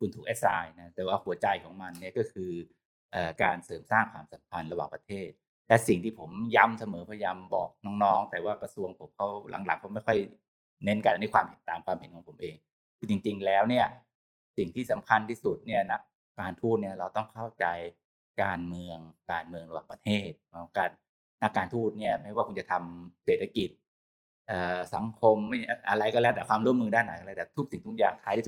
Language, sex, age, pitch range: Thai, male, 20-39, 90-125 Hz